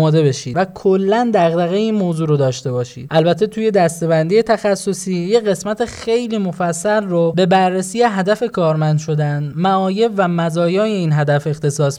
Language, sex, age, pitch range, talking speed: Persian, male, 10-29, 160-210 Hz, 145 wpm